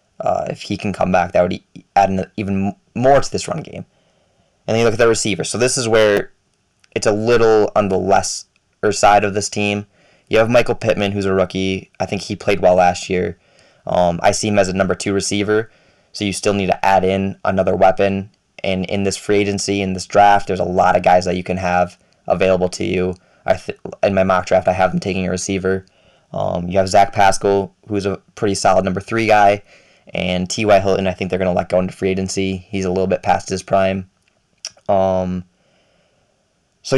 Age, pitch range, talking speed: 20-39, 95-105 Hz, 220 wpm